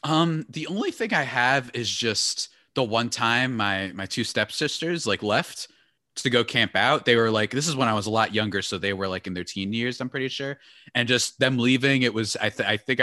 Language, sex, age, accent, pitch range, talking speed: English, male, 20-39, American, 120-165 Hz, 240 wpm